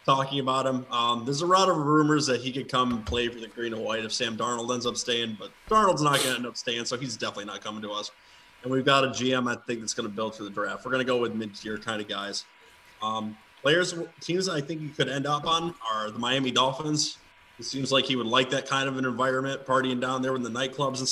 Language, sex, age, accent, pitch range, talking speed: English, male, 20-39, American, 115-135 Hz, 260 wpm